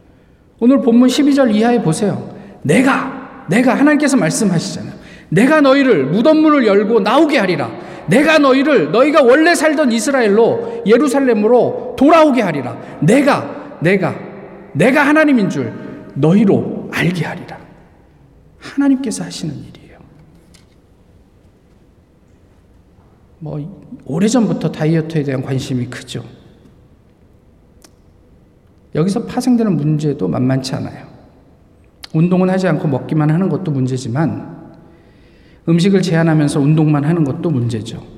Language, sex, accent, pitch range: Korean, male, native, 135-215 Hz